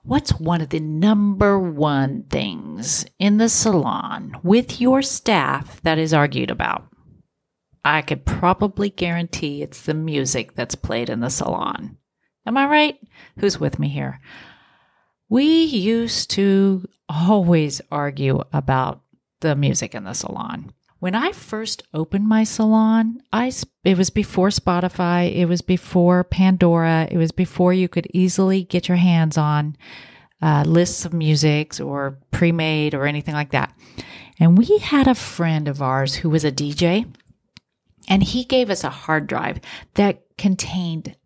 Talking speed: 150 wpm